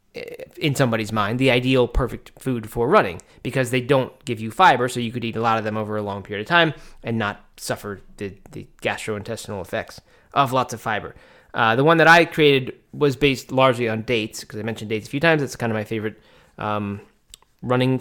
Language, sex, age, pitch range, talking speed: English, male, 20-39, 110-140 Hz, 215 wpm